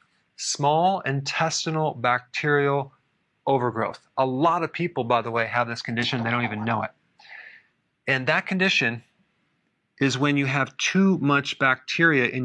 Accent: American